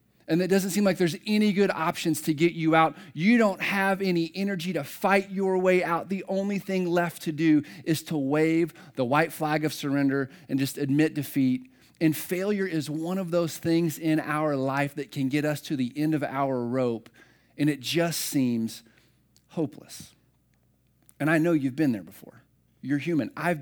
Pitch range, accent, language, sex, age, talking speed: 135-165 Hz, American, English, male, 40-59, 195 wpm